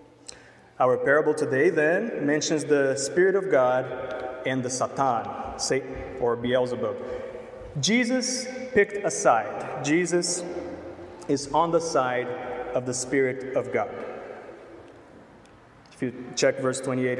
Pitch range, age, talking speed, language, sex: 130-175 Hz, 30-49, 120 wpm, English, male